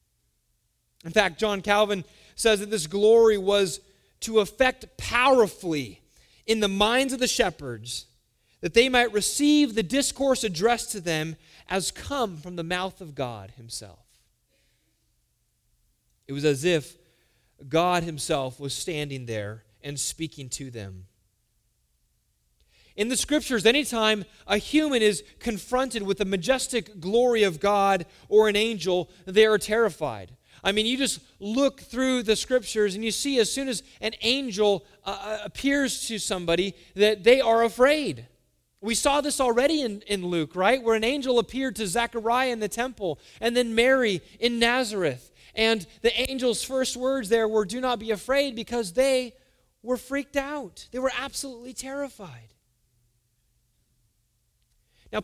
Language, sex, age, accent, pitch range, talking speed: English, male, 30-49, American, 165-245 Hz, 145 wpm